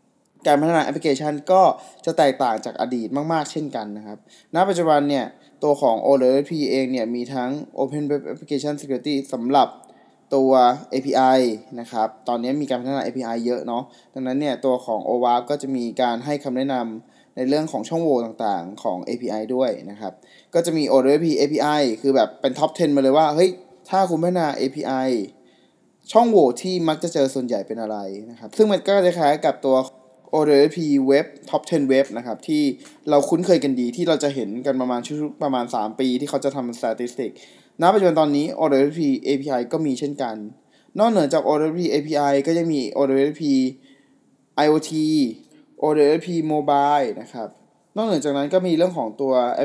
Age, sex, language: 20-39, male, Thai